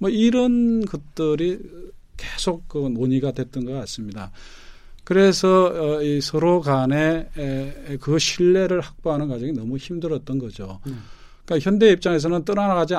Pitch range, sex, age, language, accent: 125-170 Hz, male, 40-59, Korean, native